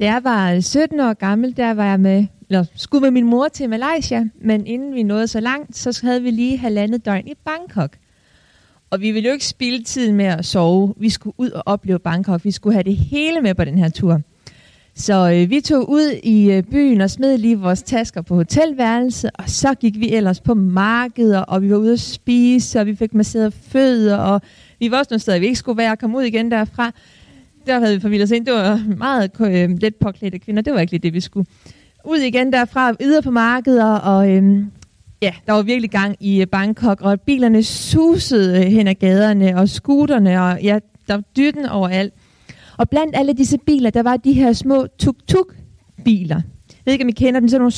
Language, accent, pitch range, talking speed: Danish, native, 195-250 Hz, 215 wpm